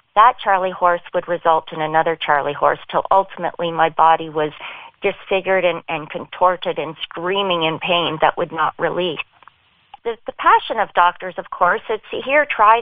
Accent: American